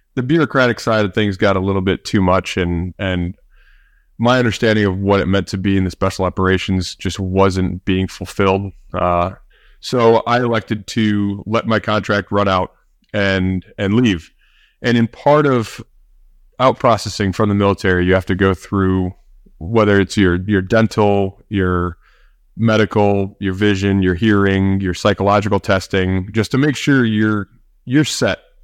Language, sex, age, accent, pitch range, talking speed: English, male, 20-39, American, 95-110 Hz, 160 wpm